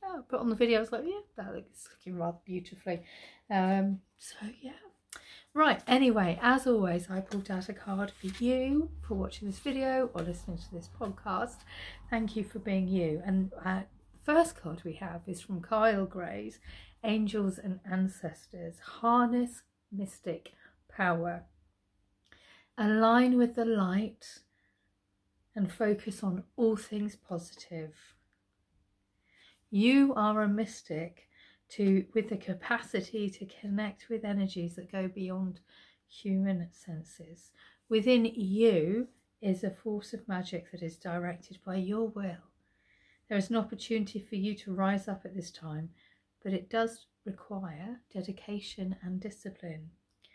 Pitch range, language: 175-220 Hz, English